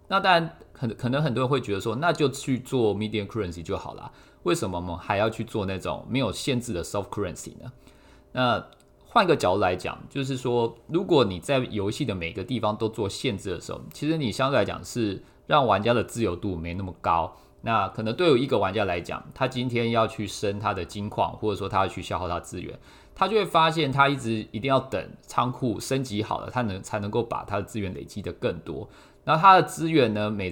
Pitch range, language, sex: 95-130 Hz, Chinese, male